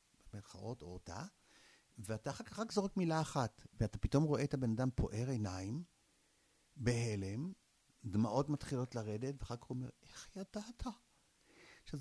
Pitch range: 110-155 Hz